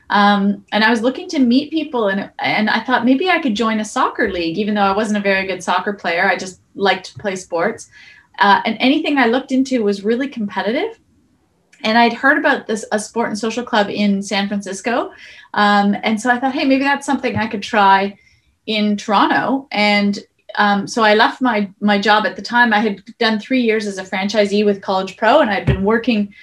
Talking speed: 220 wpm